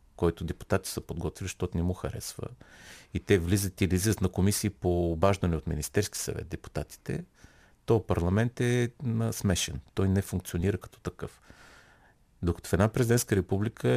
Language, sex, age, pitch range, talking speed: Bulgarian, male, 40-59, 85-105 Hz, 150 wpm